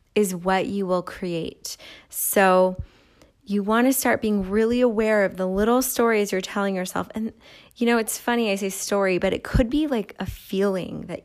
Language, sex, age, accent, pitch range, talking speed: English, female, 20-39, American, 185-225 Hz, 190 wpm